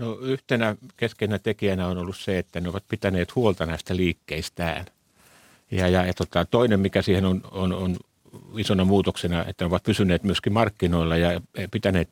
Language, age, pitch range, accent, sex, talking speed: Finnish, 60-79, 85-100 Hz, native, male, 170 wpm